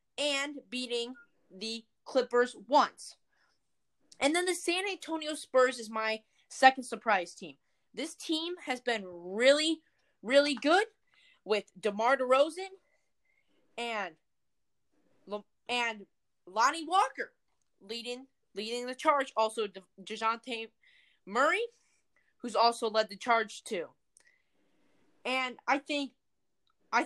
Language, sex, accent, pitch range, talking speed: English, female, American, 225-290 Hz, 110 wpm